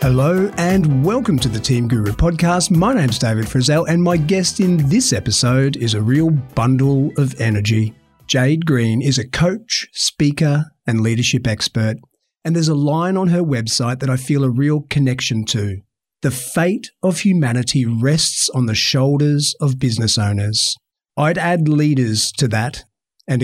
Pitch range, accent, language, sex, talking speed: 120-160 Hz, Australian, English, male, 165 wpm